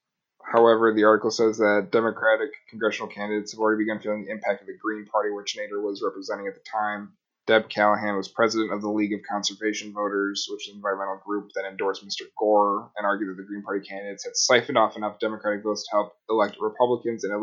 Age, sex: 20-39, male